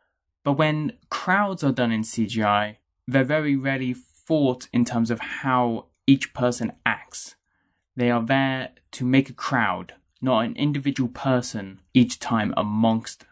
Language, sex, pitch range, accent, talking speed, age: English, male, 110-140 Hz, British, 145 wpm, 20-39